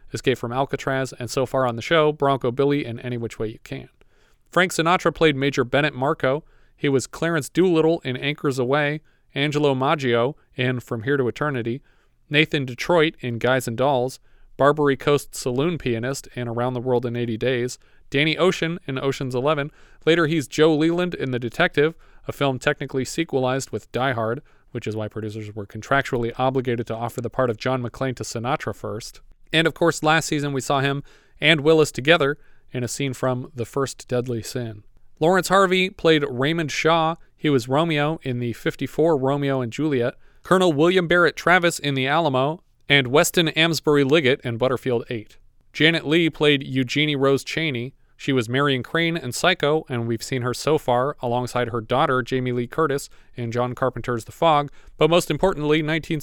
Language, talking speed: English, 180 wpm